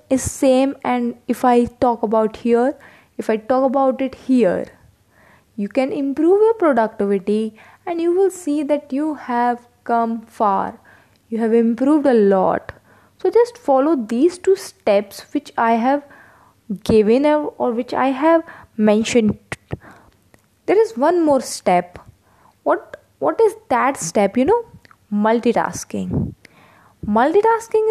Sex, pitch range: female, 230-320 Hz